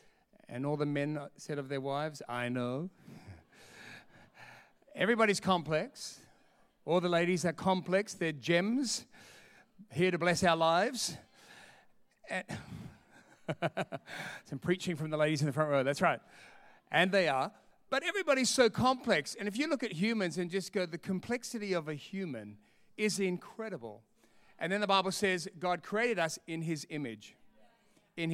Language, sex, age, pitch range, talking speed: English, male, 40-59, 155-210 Hz, 150 wpm